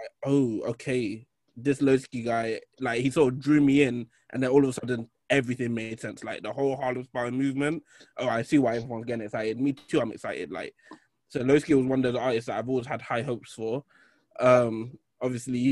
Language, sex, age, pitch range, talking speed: English, male, 20-39, 115-135 Hz, 210 wpm